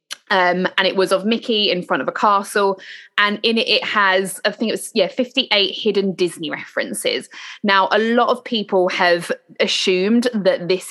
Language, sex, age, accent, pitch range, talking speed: English, female, 20-39, British, 180-225 Hz, 185 wpm